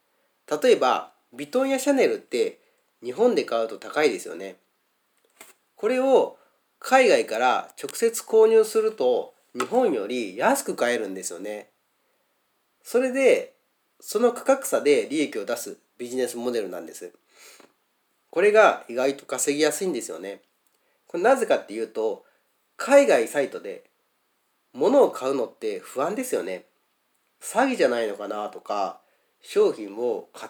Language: Japanese